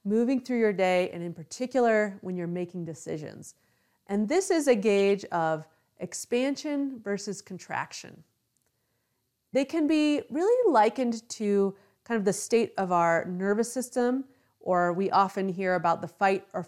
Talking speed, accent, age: 150 wpm, American, 30-49